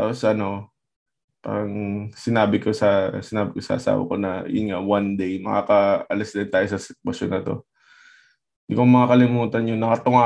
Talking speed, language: 160 wpm, Filipino